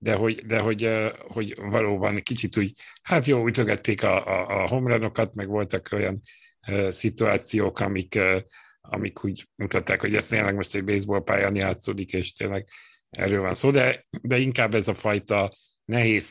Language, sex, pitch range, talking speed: Hungarian, male, 100-115 Hz, 170 wpm